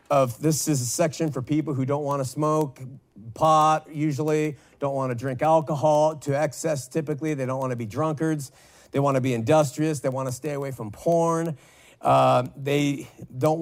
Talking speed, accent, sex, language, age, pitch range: 170 wpm, American, male, English, 50-69, 130-160 Hz